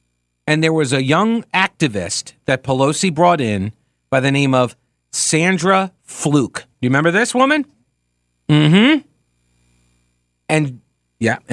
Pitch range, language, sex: 105-175 Hz, English, male